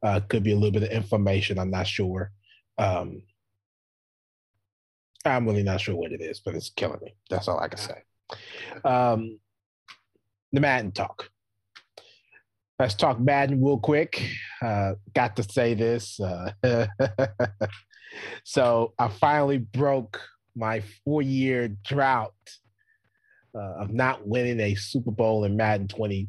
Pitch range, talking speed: 100-120 Hz, 140 wpm